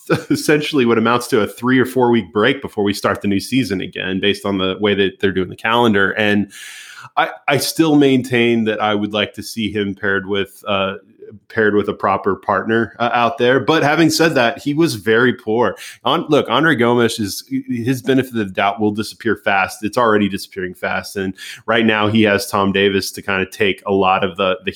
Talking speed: 220 wpm